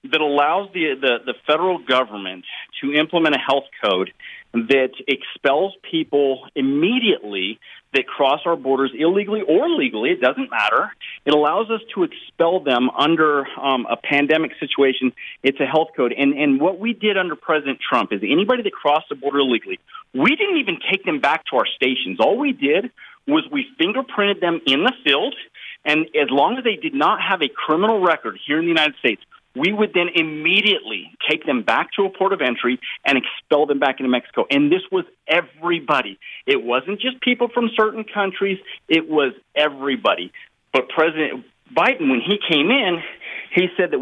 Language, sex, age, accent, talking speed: English, male, 40-59, American, 180 wpm